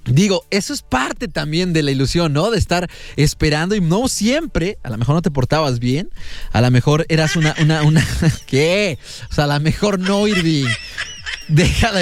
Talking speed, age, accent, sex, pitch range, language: 195 wpm, 30-49, Mexican, male, 150-225 Hz, English